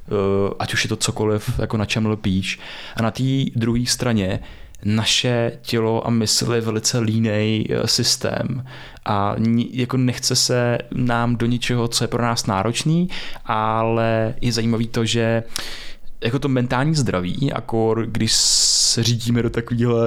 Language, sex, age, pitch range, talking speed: Czech, male, 20-39, 110-130 Hz, 135 wpm